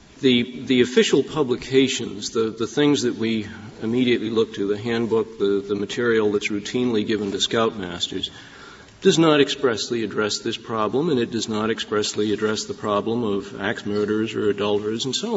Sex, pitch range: male, 105-135 Hz